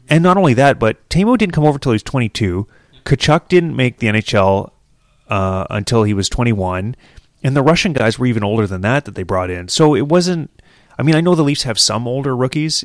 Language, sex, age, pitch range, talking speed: English, male, 30-49, 100-130 Hz, 230 wpm